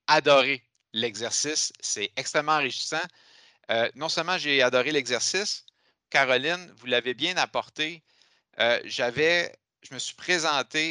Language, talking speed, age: French, 125 wpm, 50-69